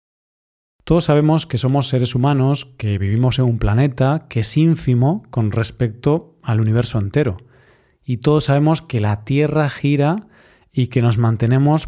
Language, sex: Spanish, male